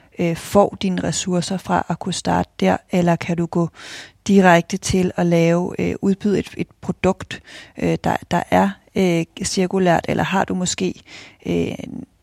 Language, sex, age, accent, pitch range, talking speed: Danish, female, 30-49, native, 170-195 Hz, 155 wpm